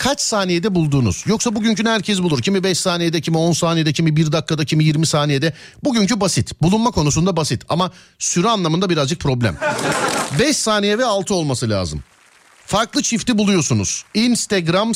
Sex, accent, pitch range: male, native, 140-200 Hz